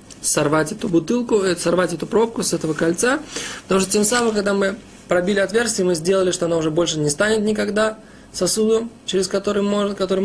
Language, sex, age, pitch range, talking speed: Russian, male, 20-39, 160-195 Hz, 170 wpm